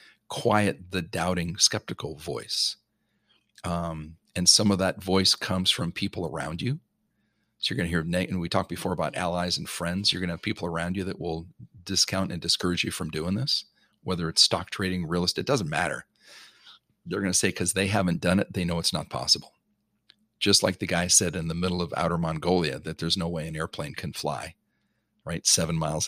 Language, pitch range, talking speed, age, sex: English, 80-95 Hz, 210 wpm, 40-59, male